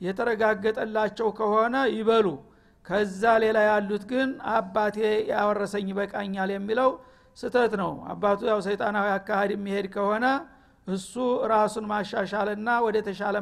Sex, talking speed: male, 105 wpm